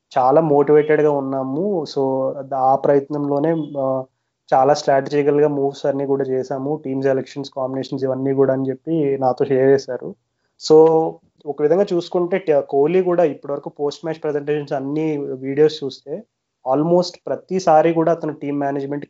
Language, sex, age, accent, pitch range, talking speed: Telugu, male, 20-39, native, 135-155 Hz, 130 wpm